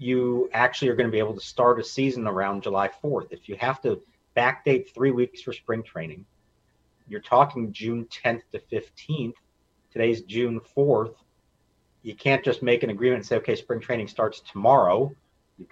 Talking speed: 175 wpm